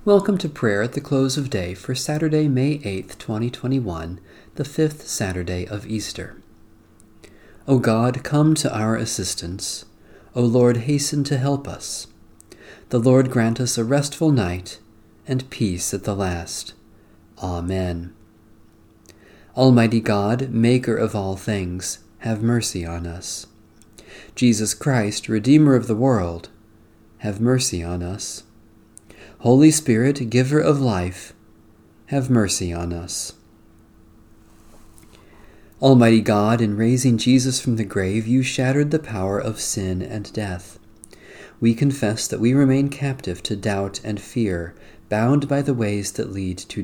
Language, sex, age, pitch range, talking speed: English, male, 40-59, 95-125 Hz, 135 wpm